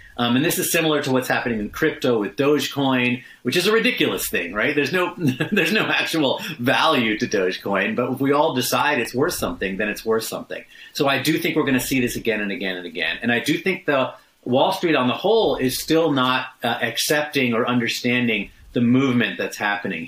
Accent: American